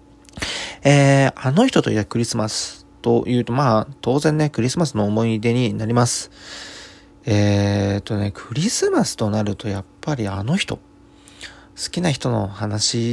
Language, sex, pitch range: Japanese, male, 100-130 Hz